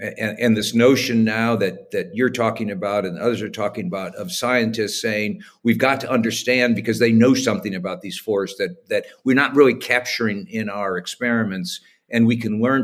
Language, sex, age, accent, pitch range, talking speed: English, male, 50-69, American, 110-130 Hz, 195 wpm